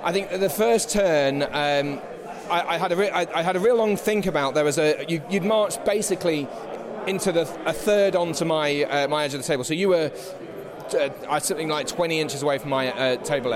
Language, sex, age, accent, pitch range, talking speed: English, male, 30-49, British, 145-175 Hz, 235 wpm